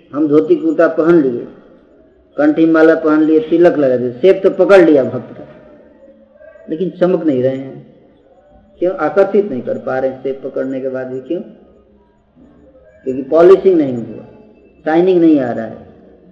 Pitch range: 130-165 Hz